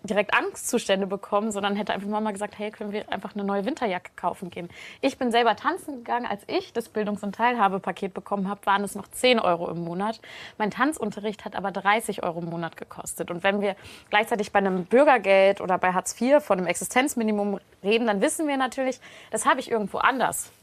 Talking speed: 205 wpm